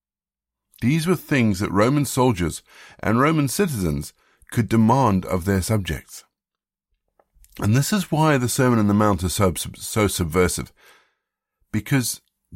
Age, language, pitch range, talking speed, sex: 50-69, English, 95-125 Hz, 135 wpm, male